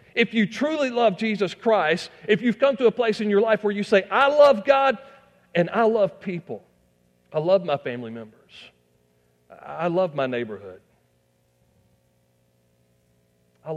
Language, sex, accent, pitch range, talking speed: English, male, American, 110-185 Hz, 155 wpm